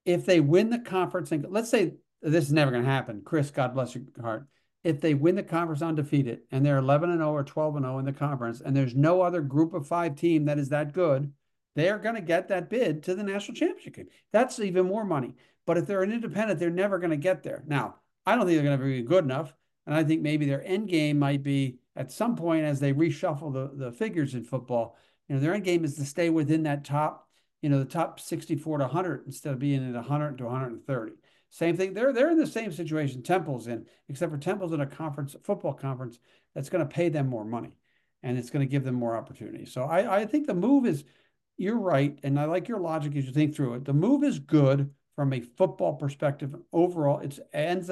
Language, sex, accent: English, male, American